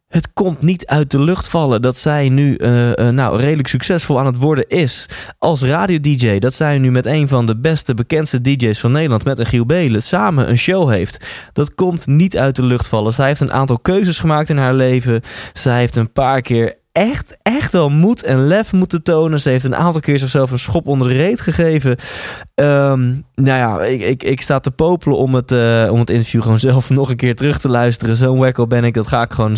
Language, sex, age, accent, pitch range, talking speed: Dutch, male, 20-39, Dutch, 110-140 Hz, 230 wpm